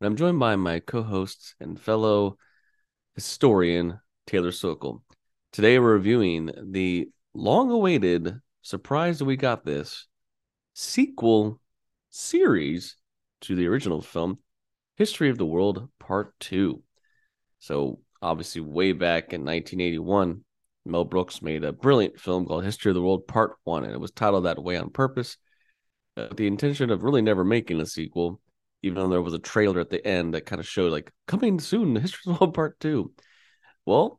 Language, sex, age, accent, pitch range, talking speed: English, male, 30-49, American, 85-120 Hz, 165 wpm